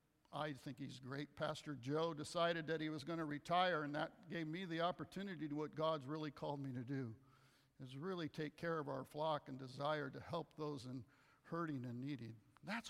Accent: American